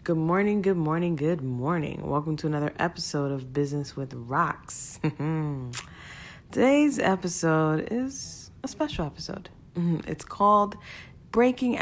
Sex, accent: female, American